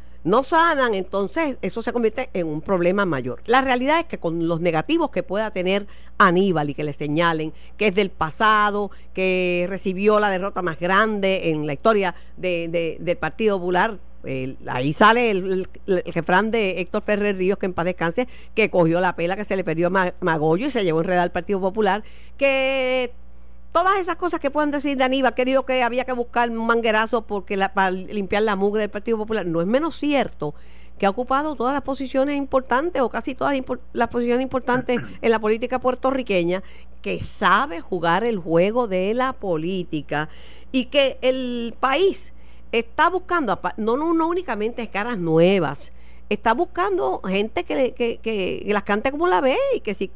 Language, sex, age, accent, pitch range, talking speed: Spanish, female, 50-69, American, 180-250 Hz, 185 wpm